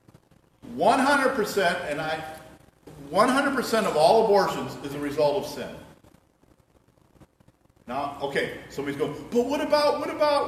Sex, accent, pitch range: male, American, 150-240 Hz